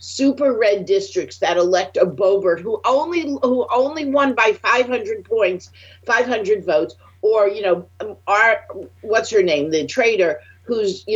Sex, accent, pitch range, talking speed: female, American, 175-275 Hz, 150 wpm